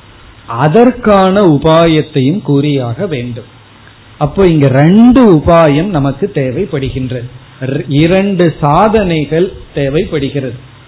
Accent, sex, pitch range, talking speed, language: native, male, 135-185 Hz, 70 wpm, Tamil